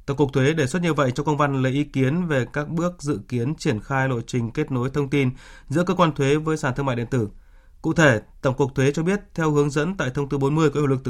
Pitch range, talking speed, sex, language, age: 125-145 Hz, 290 wpm, male, Vietnamese, 20-39